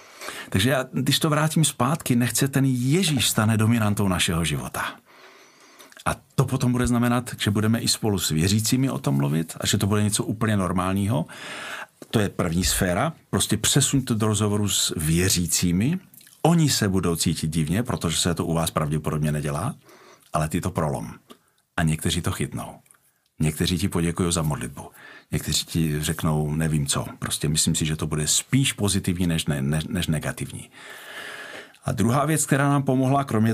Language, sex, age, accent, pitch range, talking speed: Czech, male, 50-69, native, 85-125 Hz, 165 wpm